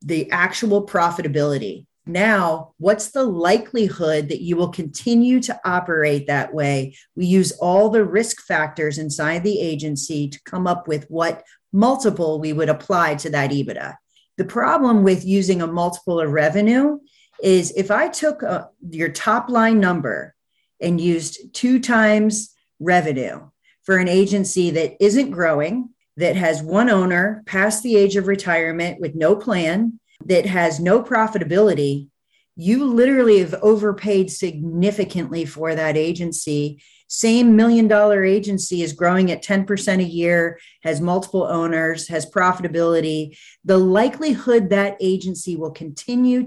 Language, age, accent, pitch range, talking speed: English, 40-59, American, 160-210 Hz, 140 wpm